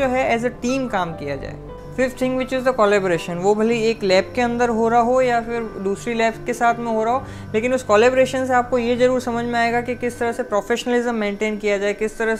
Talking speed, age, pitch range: 255 wpm, 20-39, 210-245 Hz